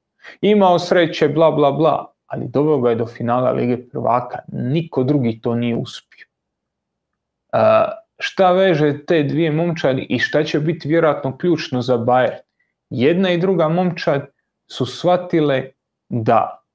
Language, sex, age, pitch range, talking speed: Croatian, male, 30-49, 125-170 Hz, 140 wpm